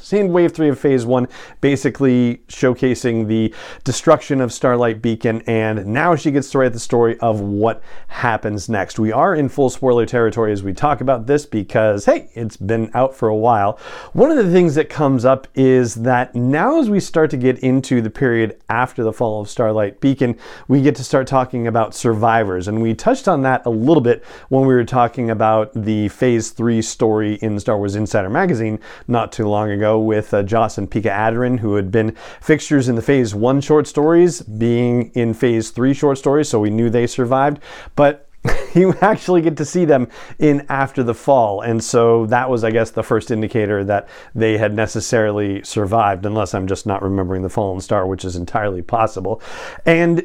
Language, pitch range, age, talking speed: English, 110-140 Hz, 40-59, 200 wpm